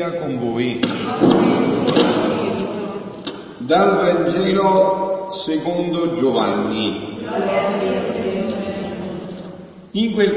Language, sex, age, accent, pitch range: Italian, male, 50-69, native, 165-215 Hz